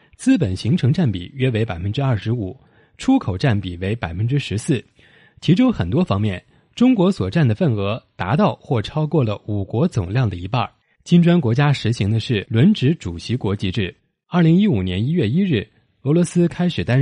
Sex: male